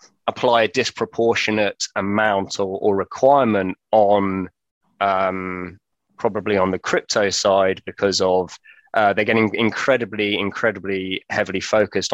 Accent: British